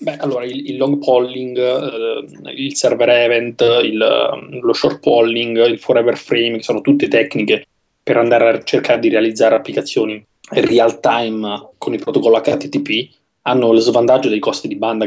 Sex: male